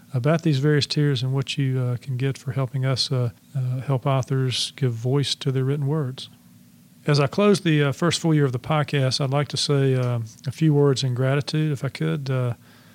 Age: 40-59